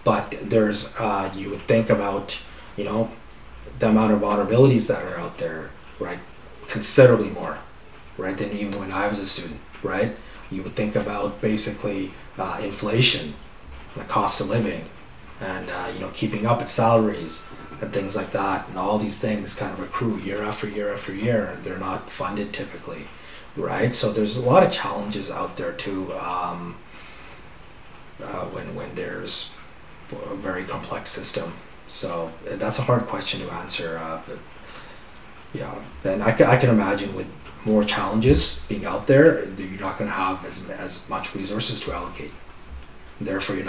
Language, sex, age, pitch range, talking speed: English, male, 30-49, 90-110 Hz, 165 wpm